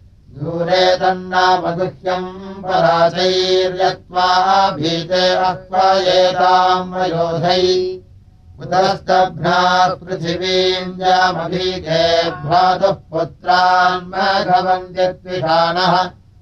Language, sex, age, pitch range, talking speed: Russian, male, 60-79, 170-185 Hz, 60 wpm